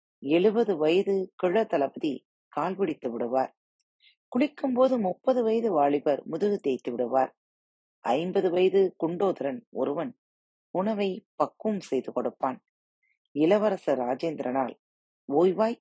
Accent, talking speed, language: native, 90 wpm, Tamil